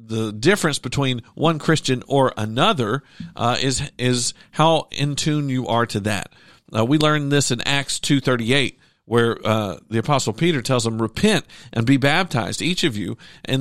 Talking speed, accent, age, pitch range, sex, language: 170 wpm, American, 50-69, 120-160 Hz, male, English